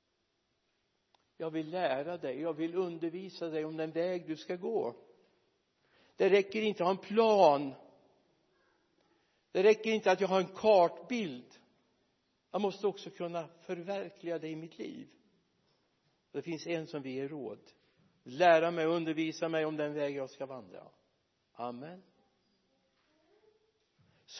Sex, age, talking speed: male, 60-79, 145 wpm